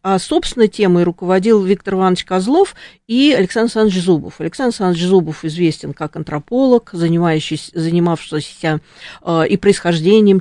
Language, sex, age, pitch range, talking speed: Russian, female, 40-59, 165-195 Hz, 125 wpm